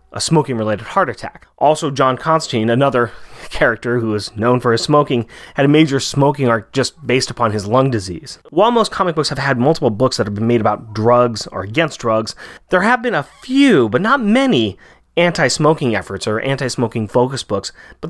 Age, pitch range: 30-49, 120-160 Hz